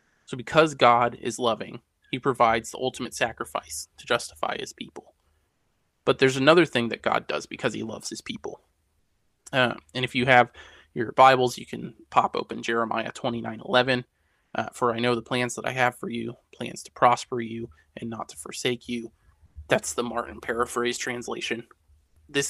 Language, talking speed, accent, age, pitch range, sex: English, 180 wpm, American, 20-39, 95-125 Hz, male